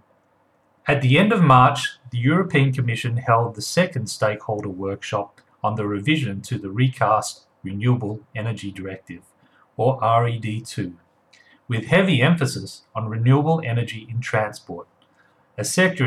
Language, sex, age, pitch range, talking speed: English, male, 40-59, 105-135 Hz, 125 wpm